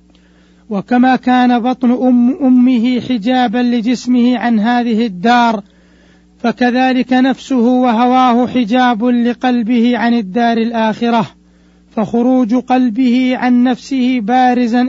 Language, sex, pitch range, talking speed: Arabic, male, 225-250 Hz, 90 wpm